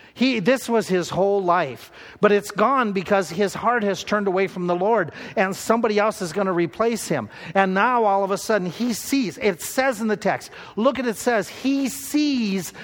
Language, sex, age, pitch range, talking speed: English, male, 50-69, 165-230 Hz, 210 wpm